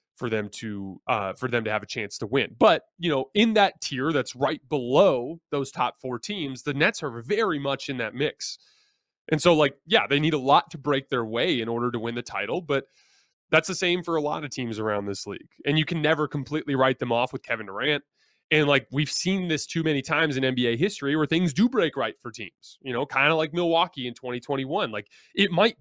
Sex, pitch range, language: male, 125-160 Hz, English